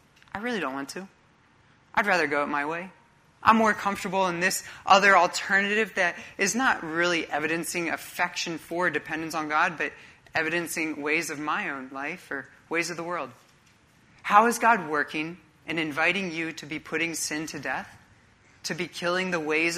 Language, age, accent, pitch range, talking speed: English, 30-49, American, 145-190 Hz, 175 wpm